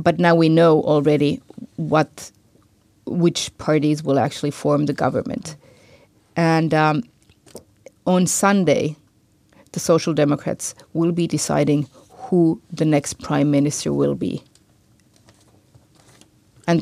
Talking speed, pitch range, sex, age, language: 110 wpm, 145-165 Hz, female, 30-49, Finnish